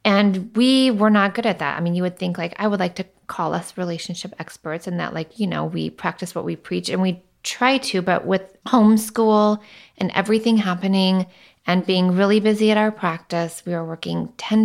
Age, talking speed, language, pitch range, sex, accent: 20-39, 215 wpm, English, 175-215 Hz, female, American